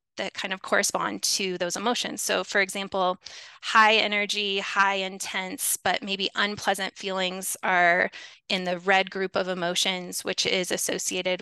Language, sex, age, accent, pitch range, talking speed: English, female, 20-39, American, 185-215 Hz, 145 wpm